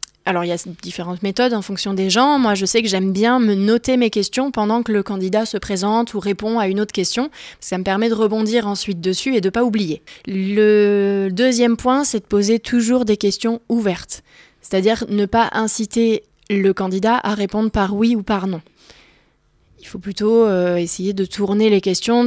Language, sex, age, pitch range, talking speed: French, female, 20-39, 190-225 Hz, 200 wpm